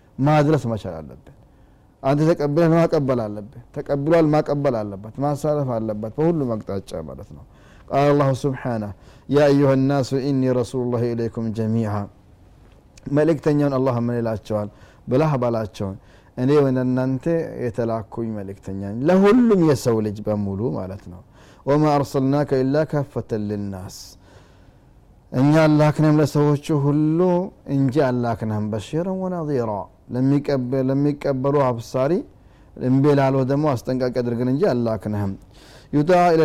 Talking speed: 115 wpm